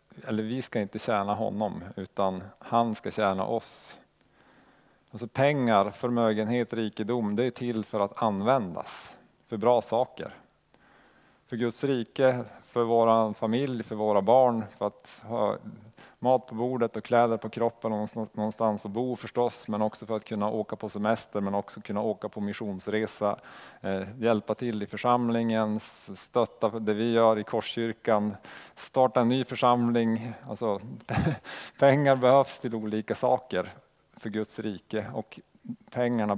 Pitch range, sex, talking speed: 105-120 Hz, male, 140 wpm